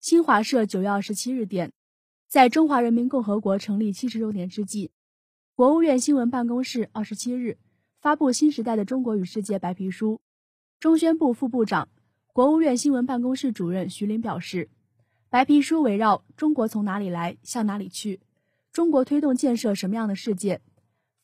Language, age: Chinese, 20-39